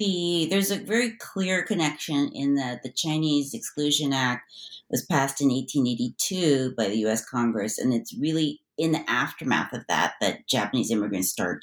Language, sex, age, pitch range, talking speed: English, female, 40-59, 125-160 Hz, 165 wpm